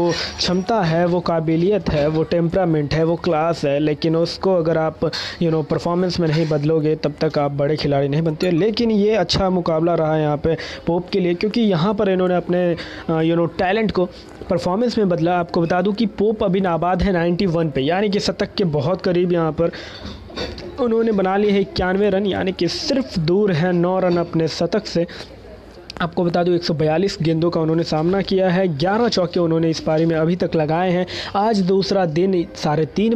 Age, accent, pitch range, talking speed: 20-39, native, 160-190 Hz, 195 wpm